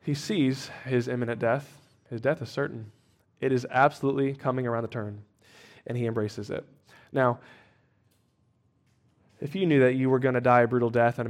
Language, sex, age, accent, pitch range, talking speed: English, male, 20-39, American, 120-155 Hz, 185 wpm